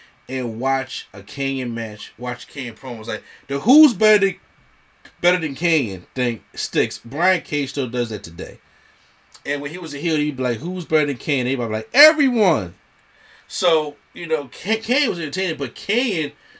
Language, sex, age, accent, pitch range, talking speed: English, male, 30-49, American, 135-180 Hz, 175 wpm